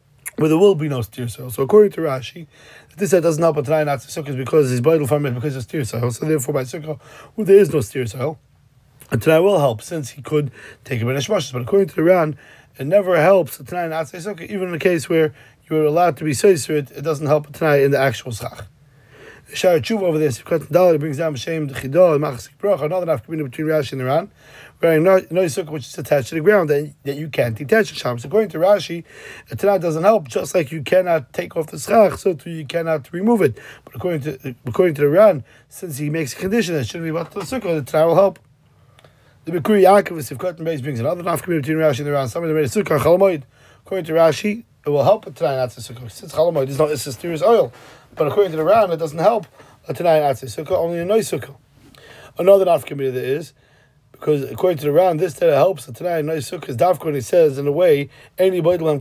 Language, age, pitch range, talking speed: English, 30-49, 135-175 Hz, 240 wpm